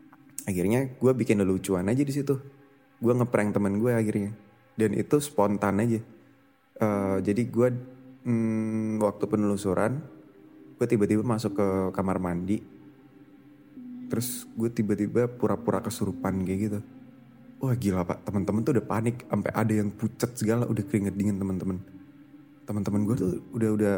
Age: 20-39